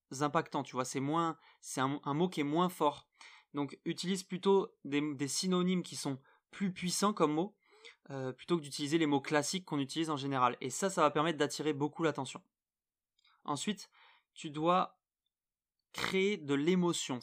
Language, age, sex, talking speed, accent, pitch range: French, 20-39, male, 175 wpm, French, 145-180 Hz